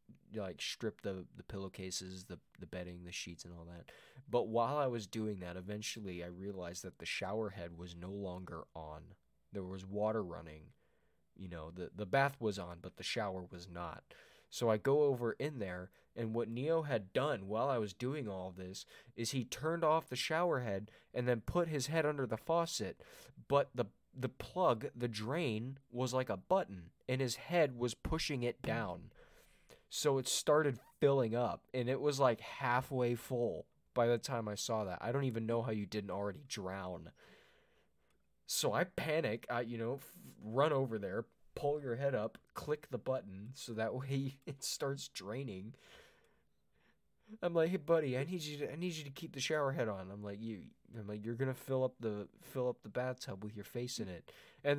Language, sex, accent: English, male, American